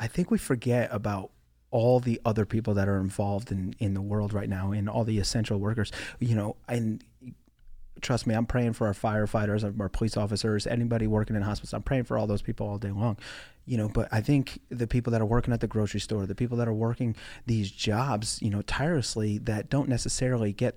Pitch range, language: 105-125 Hz, English